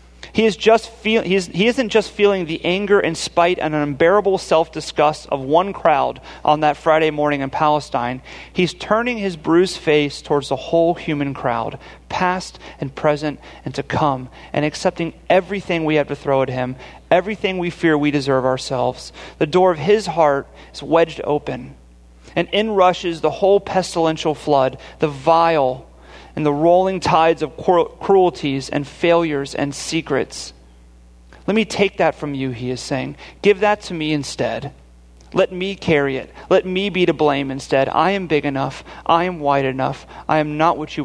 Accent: American